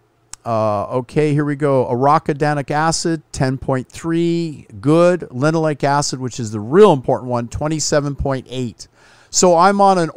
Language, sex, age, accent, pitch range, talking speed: English, male, 50-69, American, 125-165 Hz, 130 wpm